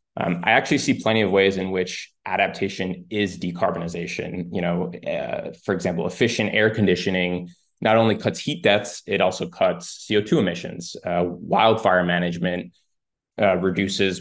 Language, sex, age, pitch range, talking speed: English, male, 20-39, 90-105 Hz, 150 wpm